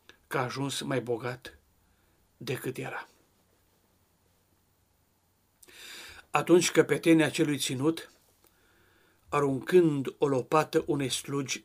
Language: Romanian